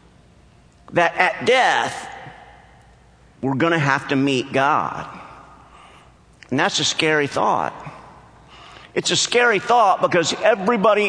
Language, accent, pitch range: English, American, 150-200 Hz